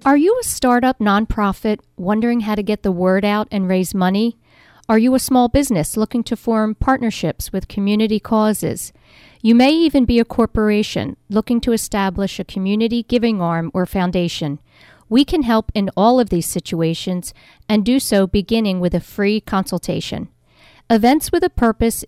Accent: American